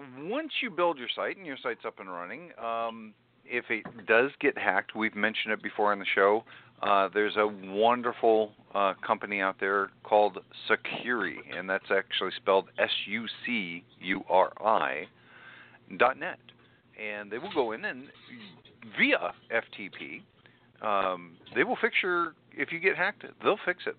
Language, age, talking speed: English, 50-69, 155 wpm